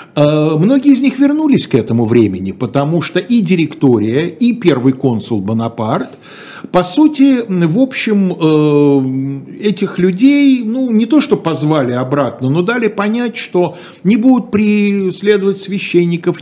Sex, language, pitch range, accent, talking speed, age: male, Russian, 135-205 Hz, native, 130 wpm, 50-69